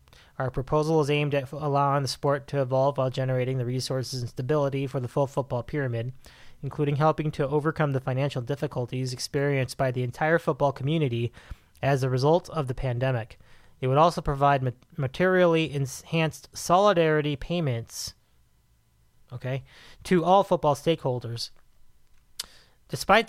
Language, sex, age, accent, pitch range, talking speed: English, male, 30-49, American, 125-160 Hz, 140 wpm